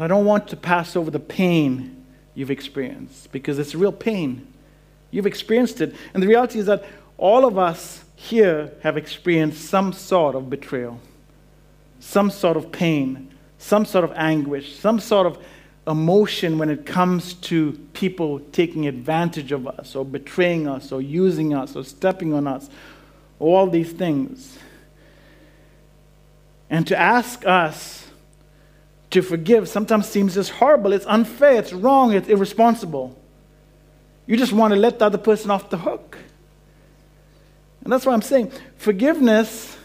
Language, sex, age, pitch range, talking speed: English, male, 50-69, 150-195 Hz, 150 wpm